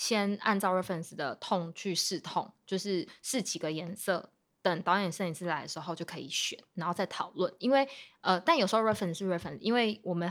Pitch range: 175-210 Hz